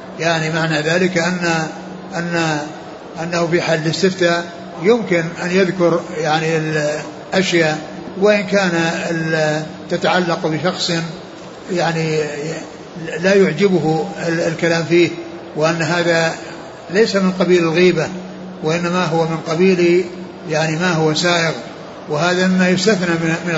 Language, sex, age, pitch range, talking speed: Arabic, male, 60-79, 160-175 Hz, 105 wpm